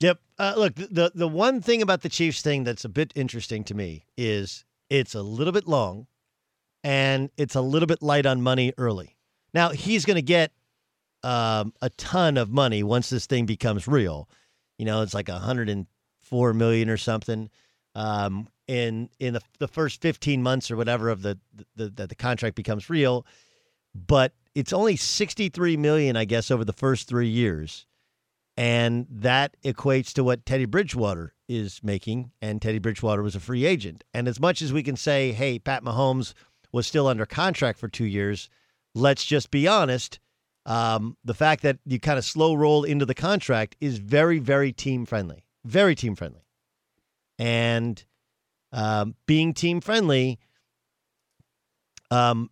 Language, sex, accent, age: English, male, American, 50-69